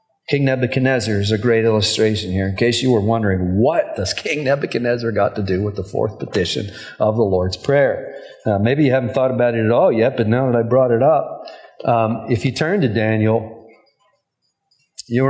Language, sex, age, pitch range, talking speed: English, male, 40-59, 110-135 Hz, 200 wpm